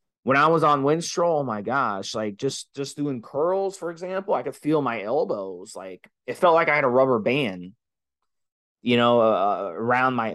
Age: 20-39